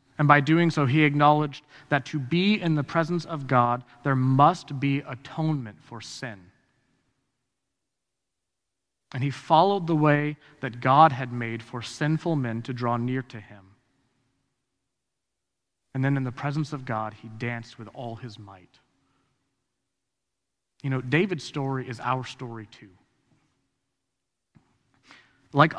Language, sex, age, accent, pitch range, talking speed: English, male, 30-49, American, 125-150 Hz, 135 wpm